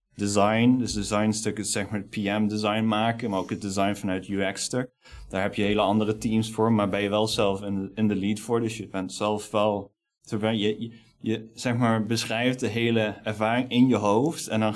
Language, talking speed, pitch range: Dutch, 220 wpm, 105-120 Hz